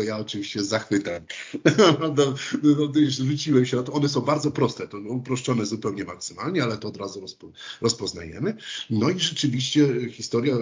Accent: native